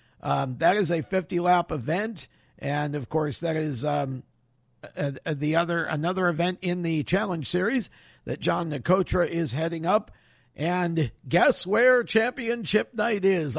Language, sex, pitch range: English, male, 150-195 Hz